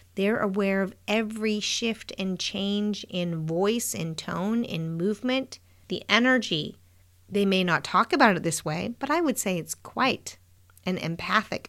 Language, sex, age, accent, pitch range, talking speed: English, female, 40-59, American, 160-225 Hz, 160 wpm